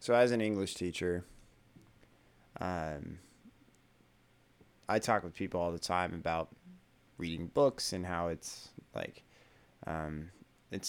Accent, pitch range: American, 85-105 Hz